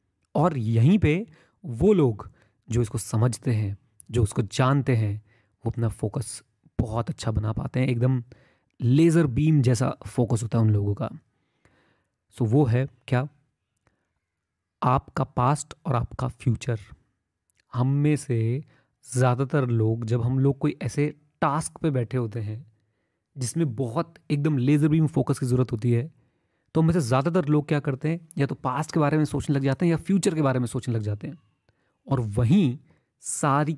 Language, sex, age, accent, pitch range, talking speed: Hindi, male, 30-49, native, 115-155 Hz, 170 wpm